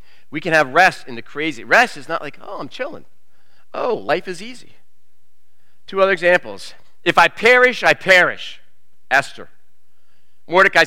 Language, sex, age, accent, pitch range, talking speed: English, male, 40-59, American, 105-175 Hz, 155 wpm